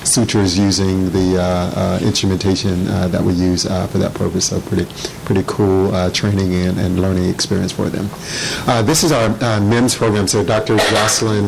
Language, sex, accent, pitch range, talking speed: English, male, American, 95-110 Hz, 180 wpm